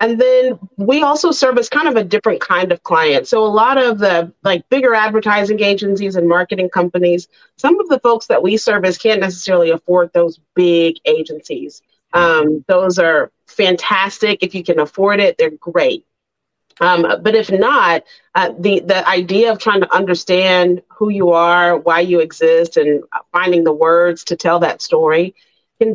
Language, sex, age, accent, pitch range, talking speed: English, female, 40-59, American, 175-235 Hz, 180 wpm